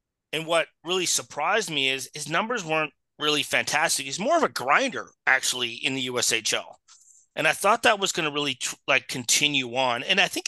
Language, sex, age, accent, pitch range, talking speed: English, male, 30-49, American, 120-160 Hz, 195 wpm